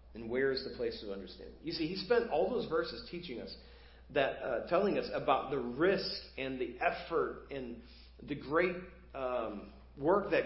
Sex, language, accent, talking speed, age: male, English, American, 185 wpm, 40-59